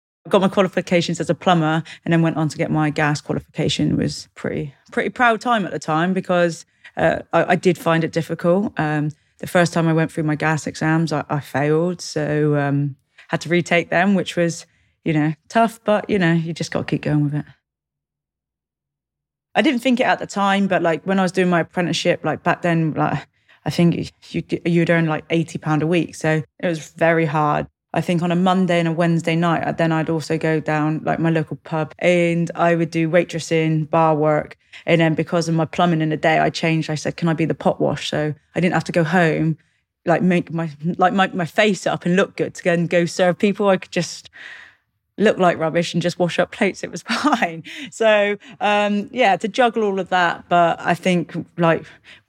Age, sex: 30-49, female